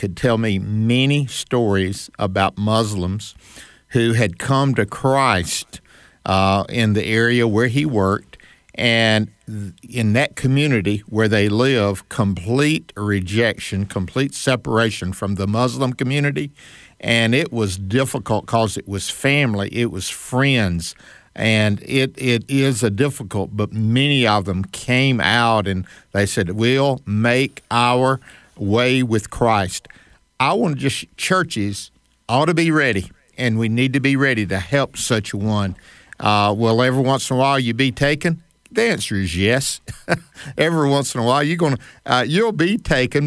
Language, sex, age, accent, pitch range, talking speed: English, male, 50-69, American, 105-140 Hz, 155 wpm